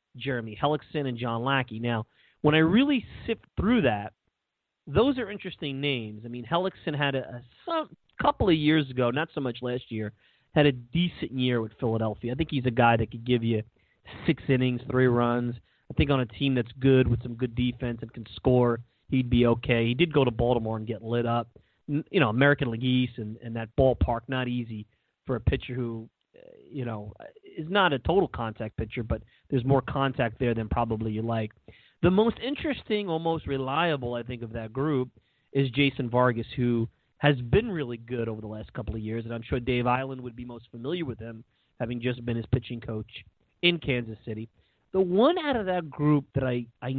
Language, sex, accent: English, male, American